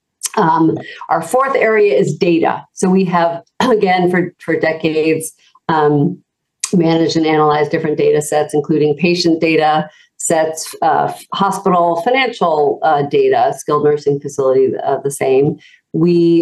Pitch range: 150-180 Hz